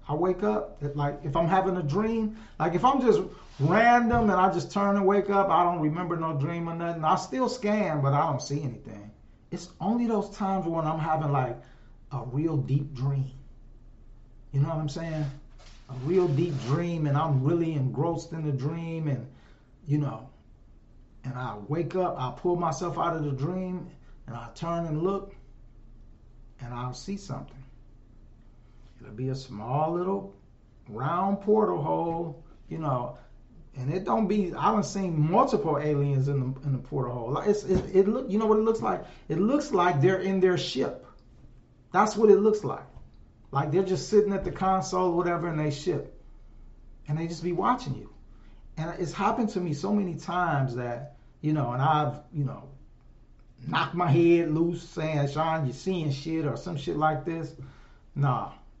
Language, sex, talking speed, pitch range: English, male, 190 wpm, 135-185 Hz